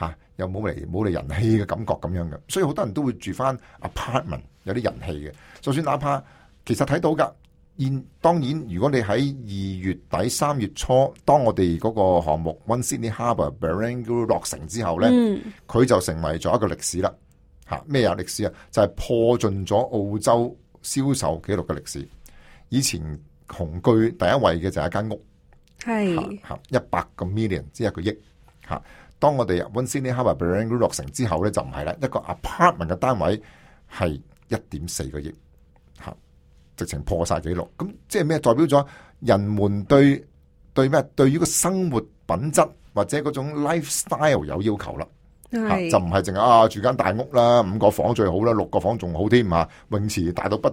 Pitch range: 85-130 Hz